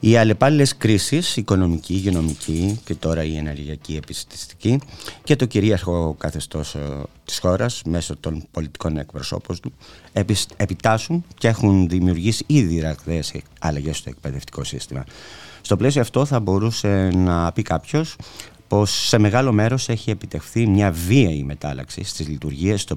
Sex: male